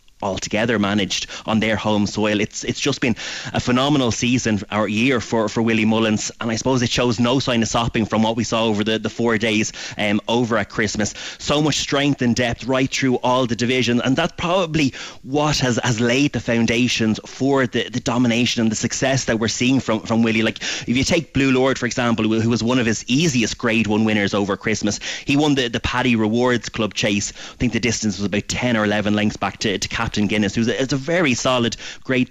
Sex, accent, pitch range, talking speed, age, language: male, Irish, 110-135 Hz, 230 wpm, 30-49, English